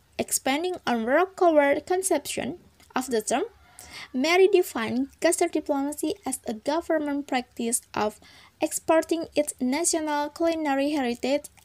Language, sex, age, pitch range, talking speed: Indonesian, female, 20-39, 240-325 Hz, 110 wpm